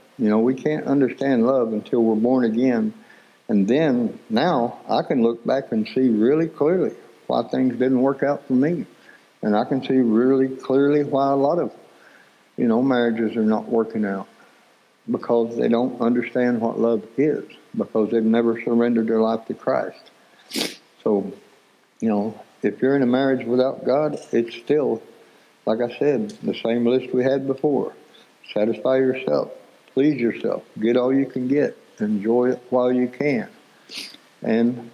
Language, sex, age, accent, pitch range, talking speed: English, male, 60-79, American, 115-135 Hz, 165 wpm